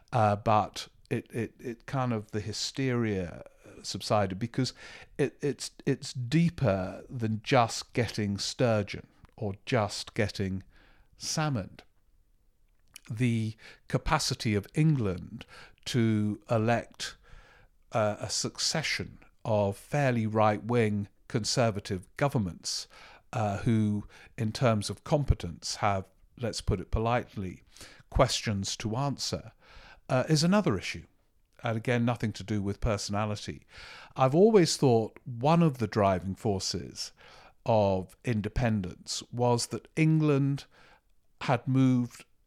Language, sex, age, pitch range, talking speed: English, male, 50-69, 100-125 Hz, 110 wpm